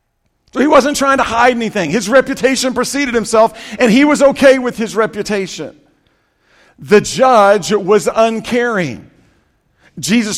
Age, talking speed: 50-69, 125 wpm